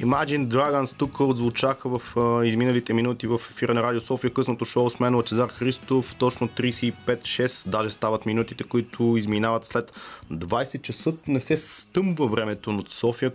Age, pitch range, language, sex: 30-49, 115-135 Hz, Bulgarian, male